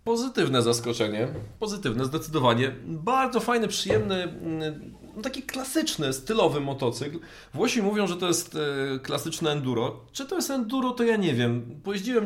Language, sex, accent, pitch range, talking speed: Polish, male, native, 125-175 Hz, 130 wpm